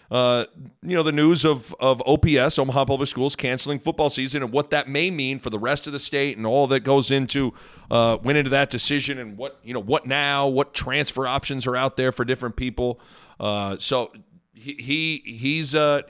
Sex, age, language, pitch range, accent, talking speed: male, 40-59, English, 110-140 Hz, American, 210 wpm